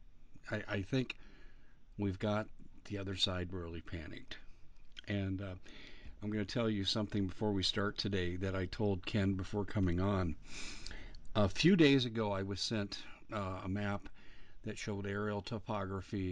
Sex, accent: male, American